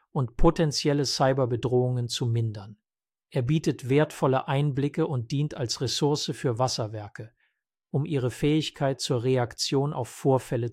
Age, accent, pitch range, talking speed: 50-69, German, 125-145 Hz, 125 wpm